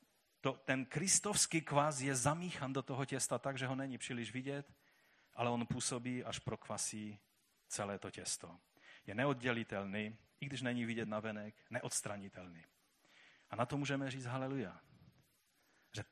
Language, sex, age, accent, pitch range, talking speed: Czech, male, 30-49, native, 120-155 Hz, 145 wpm